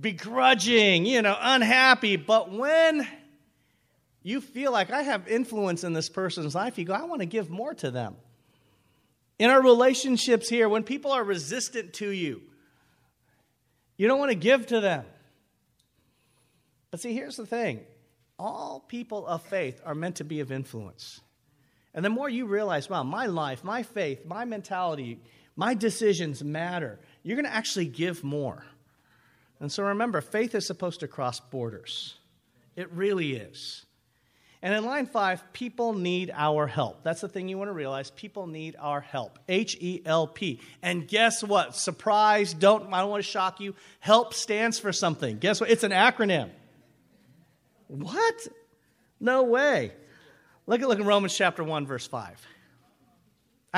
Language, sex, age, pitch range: English, male, 40-59, 150-225 Hz